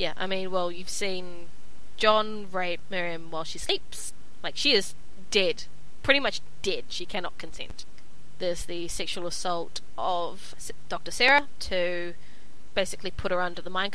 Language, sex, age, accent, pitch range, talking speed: English, female, 20-39, Australian, 180-210 Hz, 155 wpm